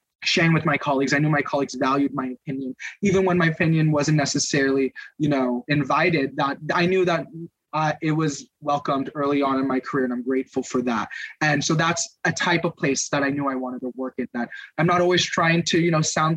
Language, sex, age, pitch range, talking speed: English, male, 20-39, 140-175 Hz, 225 wpm